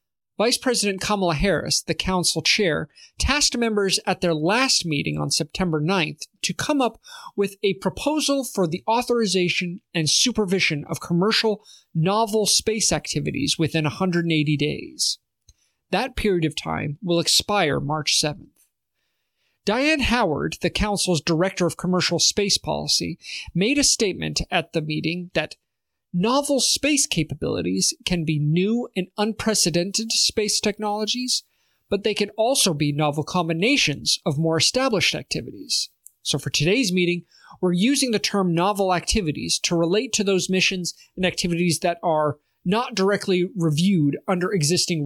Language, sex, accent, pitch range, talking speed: English, male, American, 160-210 Hz, 140 wpm